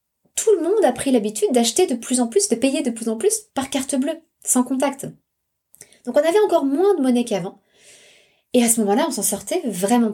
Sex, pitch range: female, 195-245 Hz